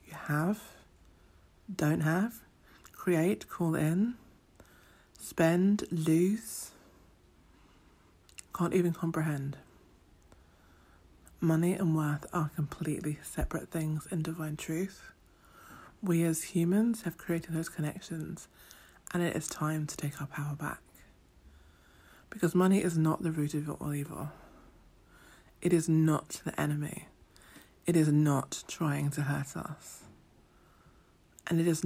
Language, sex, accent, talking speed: English, female, British, 115 wpm